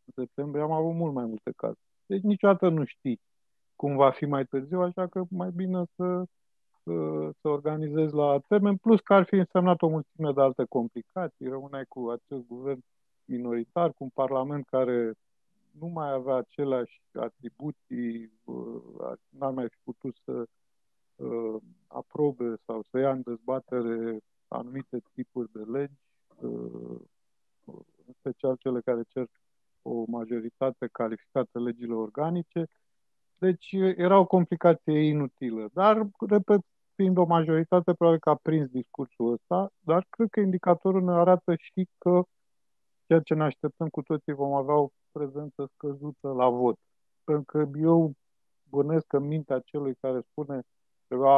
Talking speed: 145 wpm